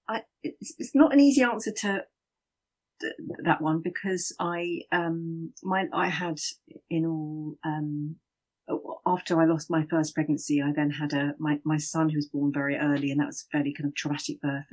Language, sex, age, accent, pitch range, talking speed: English, female, 40-59, British, 145-170 Hz, 185 wpm